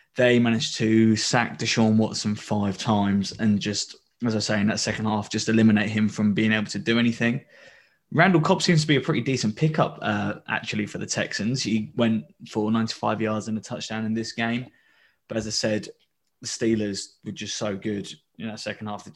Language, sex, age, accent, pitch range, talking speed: English, male, 20-39, British, 110-125 Hz, 205 wpm